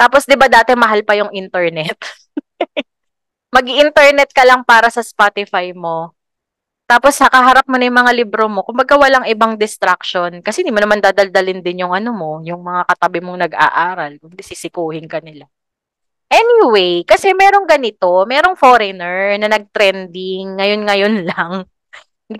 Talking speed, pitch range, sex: 150 wpm, 180-250 Hz, female